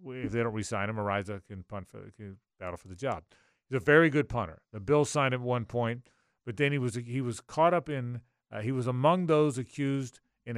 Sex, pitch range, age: male, 110-140 Hz, 40-59